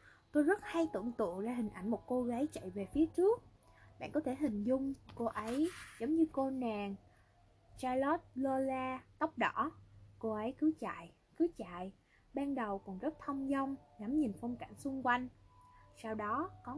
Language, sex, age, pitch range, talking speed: Vietnamese, female, 20-39, 200-285 Hz, 180 wpm